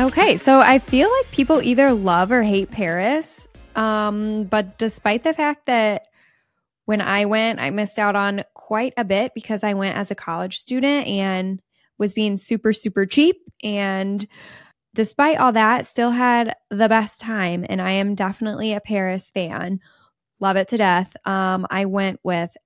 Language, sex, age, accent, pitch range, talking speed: English, female, 10-29, American, 190-225 Hz, 170 wpm